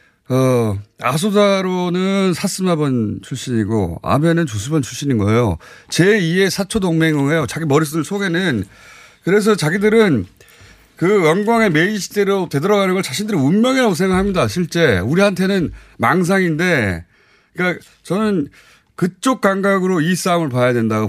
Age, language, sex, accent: 30-49, Korean, male, native